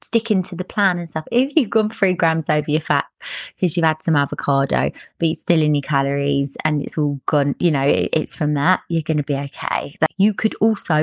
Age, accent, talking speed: 20-39, British, 235 wpm